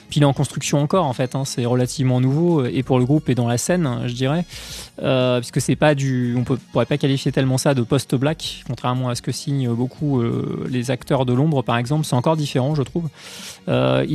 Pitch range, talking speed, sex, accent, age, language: 130-165 Hz, 230 wpm, male, French, 20-39, English